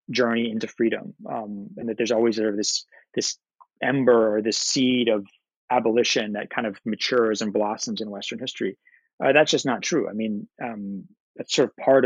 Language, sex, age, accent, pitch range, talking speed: English, male, 30-49, American, 105-130 Hz, 195 wpm